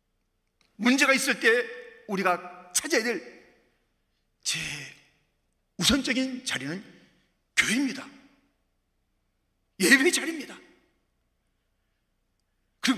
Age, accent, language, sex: 40-59, native, Korean, male